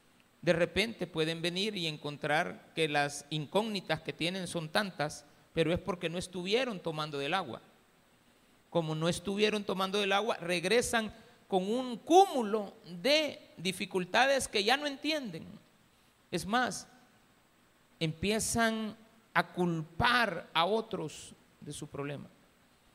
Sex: male